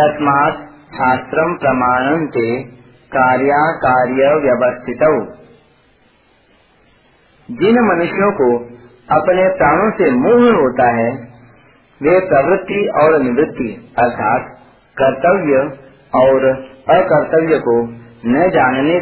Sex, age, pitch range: male, 40-59, 130-175 Hz